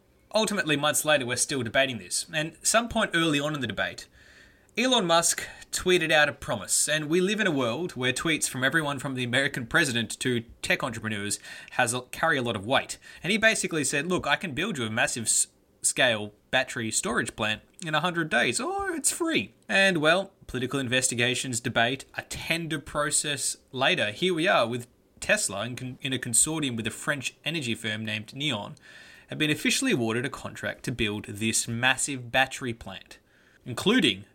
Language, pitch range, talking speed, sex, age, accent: English, 120-165 Hz, 175 wpm, male, 20-39, Australian